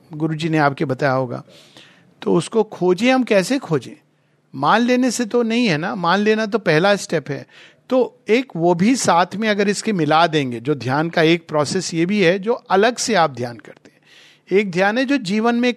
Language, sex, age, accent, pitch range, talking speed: Hindi, male, 50-69, native, 140-180 Hz, 210 wpm